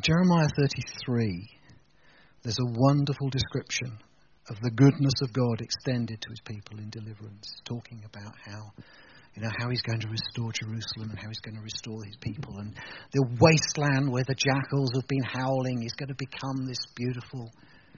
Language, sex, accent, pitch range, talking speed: English, male, British, 120-155 Hz, 170 wpm